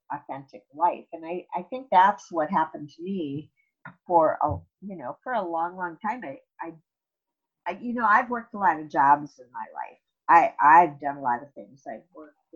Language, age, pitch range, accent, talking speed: English, 50-69, 155-210 Hz, American, 190 wpm